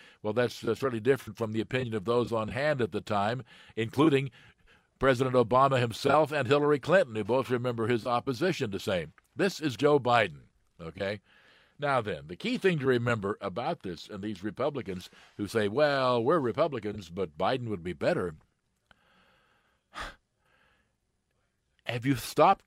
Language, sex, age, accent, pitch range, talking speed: English, male, 60-79, American, 115-155 Hz, 155 wpm